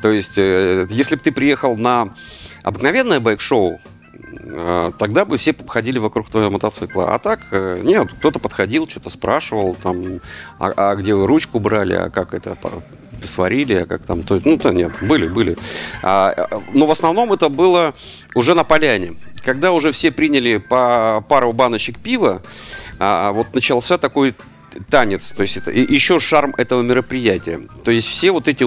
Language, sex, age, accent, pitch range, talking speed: Russian, male, 40-59, native, 100-130 Hz, 160 wpm